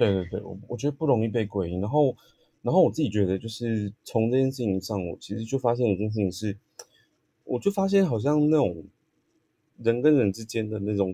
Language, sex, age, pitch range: Chinese, male, 20-39, 95-120 Hz